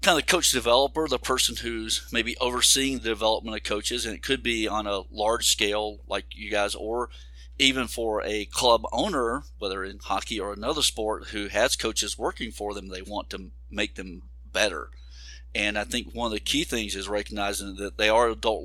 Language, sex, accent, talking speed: English, male, American, 200 wpm